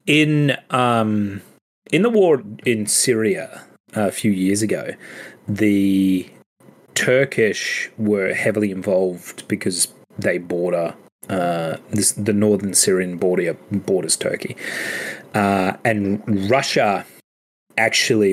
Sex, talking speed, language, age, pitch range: male, 100 wpm, English, 30-49, 95-115 Hz